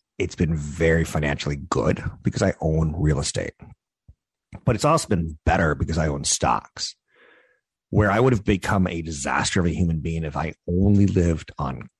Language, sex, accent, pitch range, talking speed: English, male, American, 80-105 Hz, 175 wpm